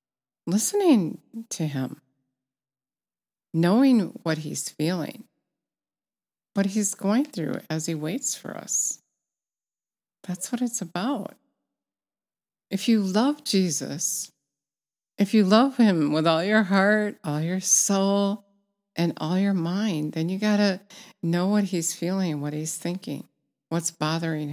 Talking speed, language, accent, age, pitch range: 125 wpm, English, American, 50-69, 155-200 Hz